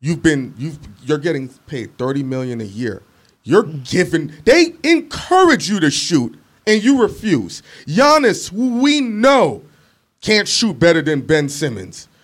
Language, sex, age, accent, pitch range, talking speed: English, male, 30-49, American, 135-185 Hz, 145 wpm